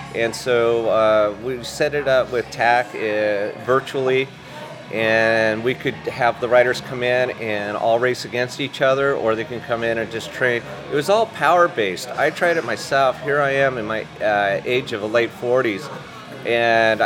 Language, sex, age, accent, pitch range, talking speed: English, male, 40-59, American, 115-140 Hz, 185 wpm